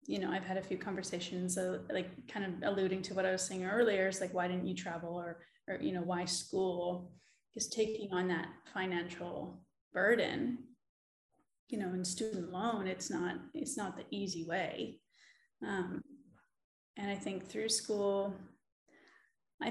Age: 20-39